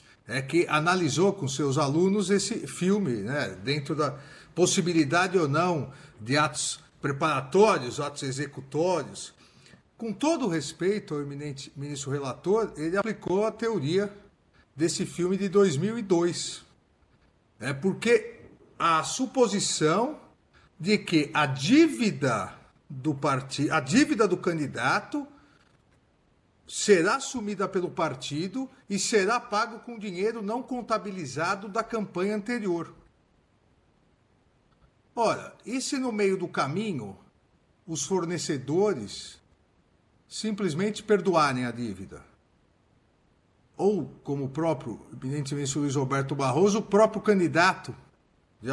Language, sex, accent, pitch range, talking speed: Portuguese, male, Brazilian, 140-200 Hz, 110 wpm